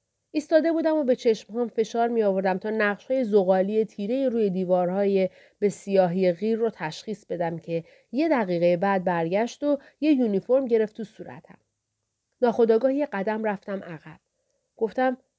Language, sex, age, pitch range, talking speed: Persian, female, 40-59, 195-255 Hz, 150 wpm